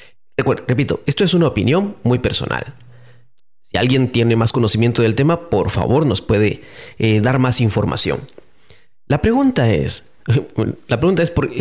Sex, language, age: male, English, 40-59